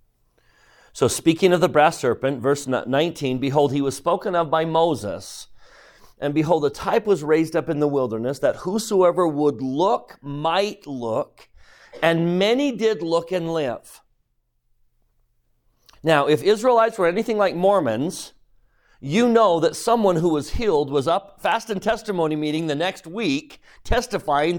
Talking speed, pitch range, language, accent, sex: 150 wpm, 140-195 Hz, English, American, male